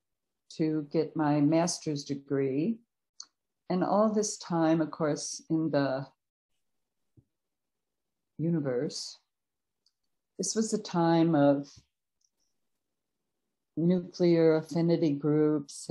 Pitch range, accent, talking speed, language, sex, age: 140-155 Hz, American, 85 wpm, English, female, 60-79